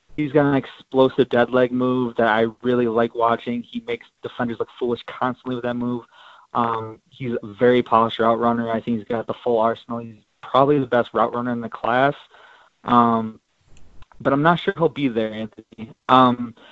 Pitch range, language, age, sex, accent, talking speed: 115-135 Hz, English, 20-39, male, American, 195 wpm